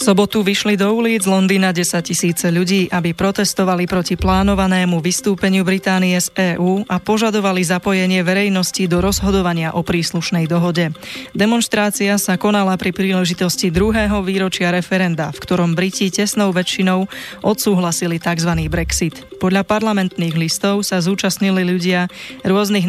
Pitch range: 175-200 Hz